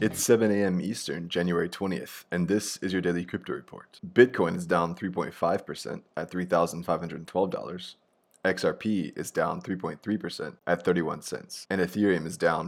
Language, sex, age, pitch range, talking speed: English, male, 20-39, 85-95 Hz, 135 wpm